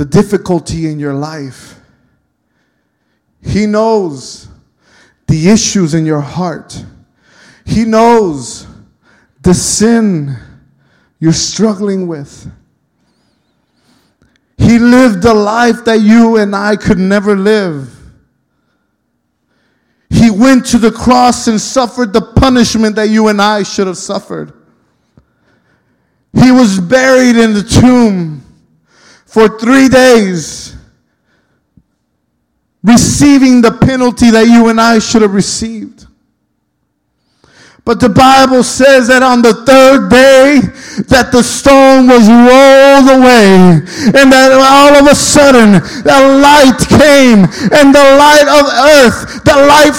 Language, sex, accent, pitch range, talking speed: English, male, American, 210-285 Hz, 115 wpm